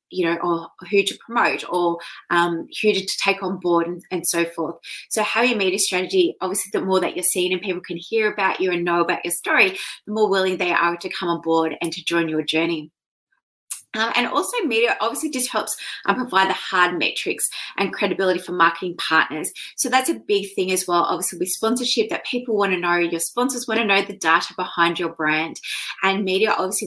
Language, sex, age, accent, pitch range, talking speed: English, female, 20-39, Australian, 180-245 Hz, 215 wpm